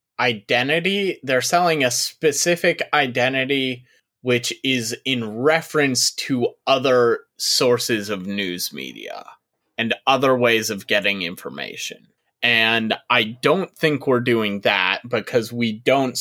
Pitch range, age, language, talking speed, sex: 115-135 Hz, 20-39, English, 120 wpm, male